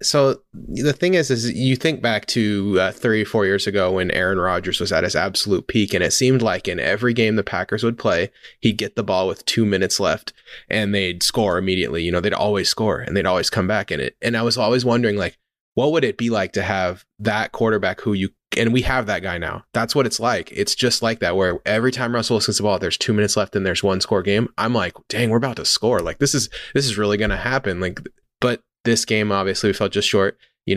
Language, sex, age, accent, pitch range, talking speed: English, male, 20-39, American, 95-115 Hz, 255 wpm